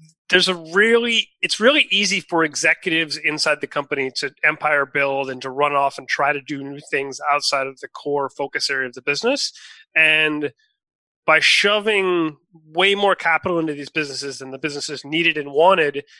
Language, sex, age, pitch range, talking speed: English, male, 30-49, 140-175 Hz, 180 wpm